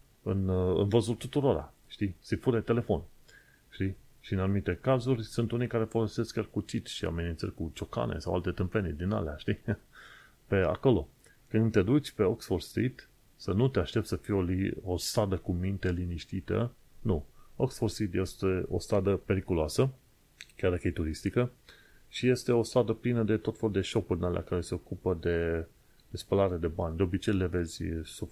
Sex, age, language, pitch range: male, 30-49, Romanian, 85-110 Hz